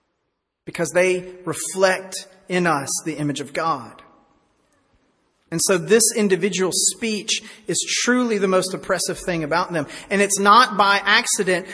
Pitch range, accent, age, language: 170-205 Hz, American, 40-59, English